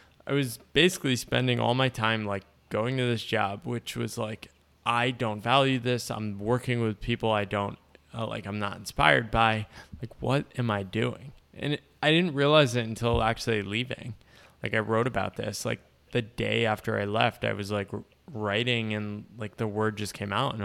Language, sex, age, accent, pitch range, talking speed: English, male, 20-39, American, 100-120 Hz, 195 wpm